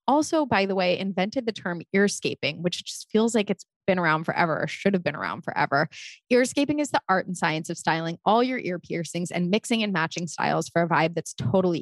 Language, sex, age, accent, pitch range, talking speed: English, female, 20-39, American, 170-225 Hz, 225 wpm